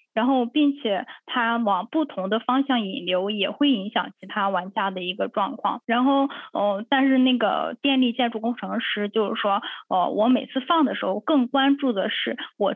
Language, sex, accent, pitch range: Chinese, female, native, 215-275 Hz